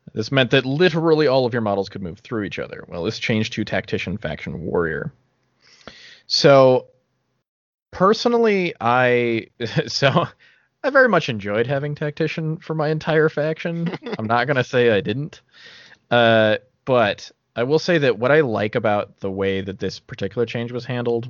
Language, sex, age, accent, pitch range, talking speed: English, male, 20-39, American, 100-135 Hz, 165 wpm